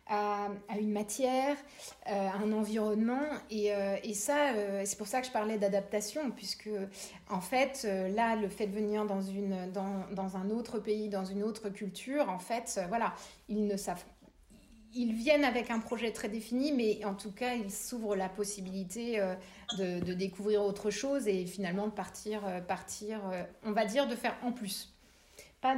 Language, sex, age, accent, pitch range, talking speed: French, female, 30-49, French, 195-230 Hz, 190 wpm